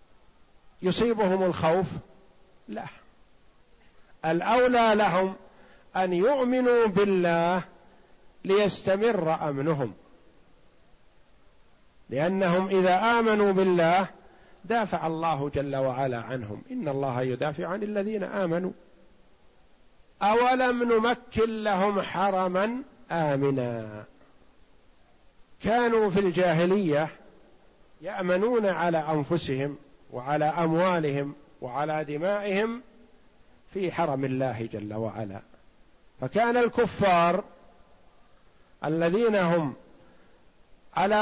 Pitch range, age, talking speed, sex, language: 145-205 Hz, 50-69, 75 wpm, male, Arabic